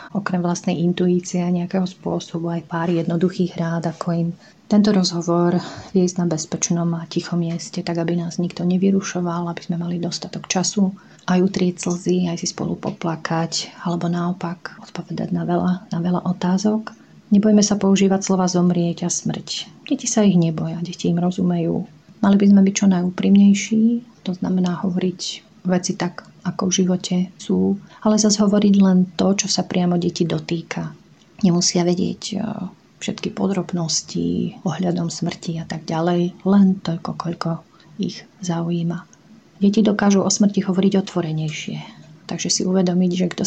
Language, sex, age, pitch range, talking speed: Slovak, female, 30-49, 170-195 Hz, 150 wpm